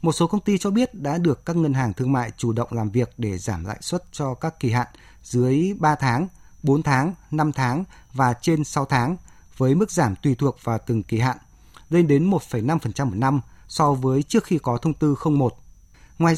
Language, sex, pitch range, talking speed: Vietnamese, male, 95-150 Hz, 215 wpm